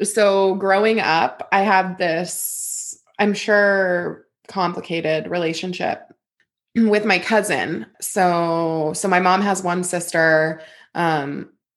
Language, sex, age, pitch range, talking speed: English, female, 20-39, 170-200 Hz, 105 wpm